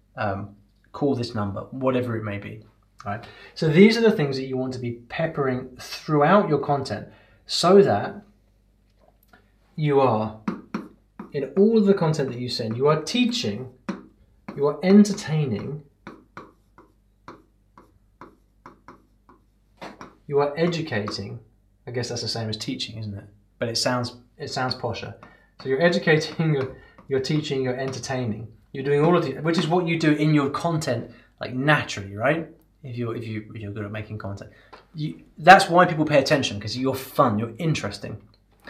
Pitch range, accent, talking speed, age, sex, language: 105-155 Hz, British, 160 wpm, 20-39, male, English